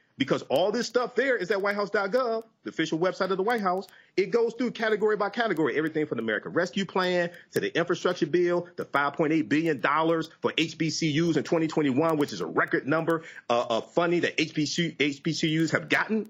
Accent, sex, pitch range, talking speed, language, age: American, male, 160-235 Hz, 180 wpm, English, 40-59